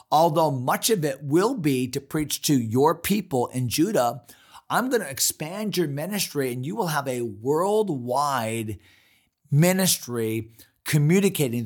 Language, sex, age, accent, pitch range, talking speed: English, male, 40-59, American, 105-145 Hz, 140 wpm